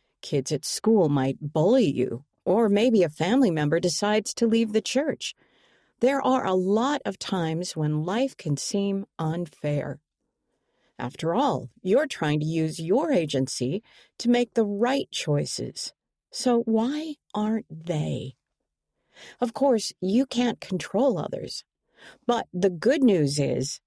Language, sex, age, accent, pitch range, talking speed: English, female, 50-69, American, 155-235 Hz, 140 wpm